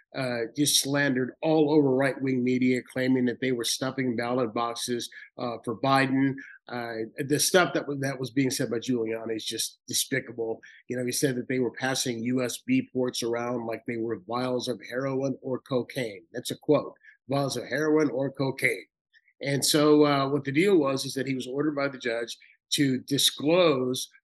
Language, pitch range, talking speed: English, 125-155 Hz, 185 wpm